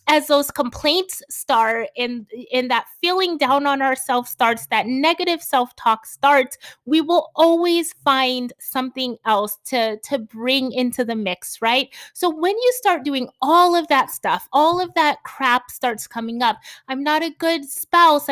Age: 20-39